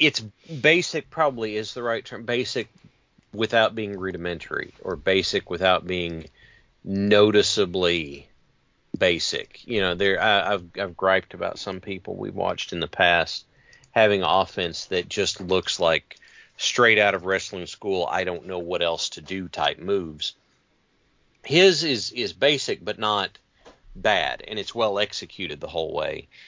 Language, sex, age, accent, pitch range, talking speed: English, male, 40-59, American, 95-120 Hz, 145 wpm